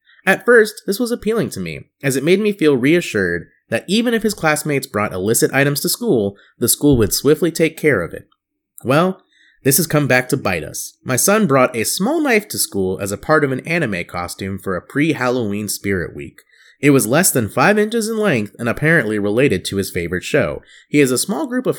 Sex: male